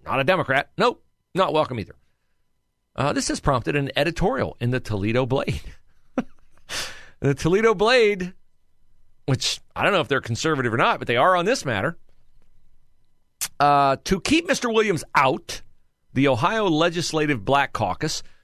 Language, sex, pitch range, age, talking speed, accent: English, male, 110-160 Hz, 40-59, 150 wpm, American